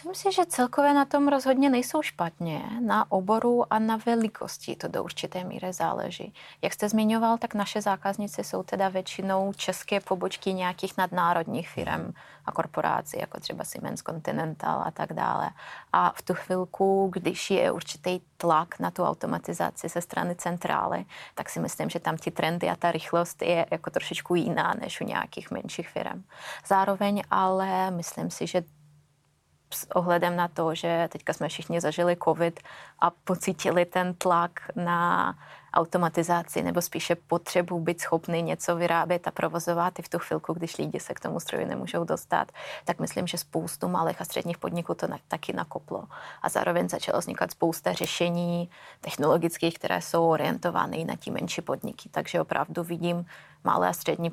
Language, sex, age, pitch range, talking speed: Czech, female, 20-39, 165-195 Hz, 165 wpm